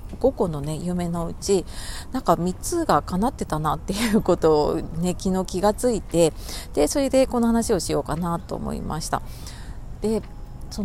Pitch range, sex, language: 155-230 Hz, female, Japanese